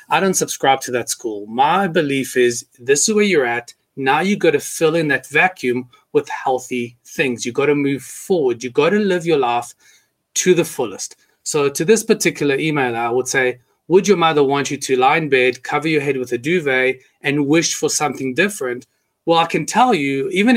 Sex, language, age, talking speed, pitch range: male, English, 30-49, 215 wpm, 135-200 Hz